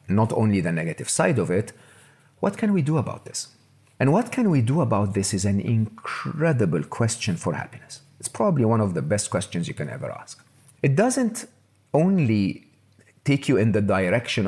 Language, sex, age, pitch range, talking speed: English, male, 50-69, 100-135 Hz, 185 wpm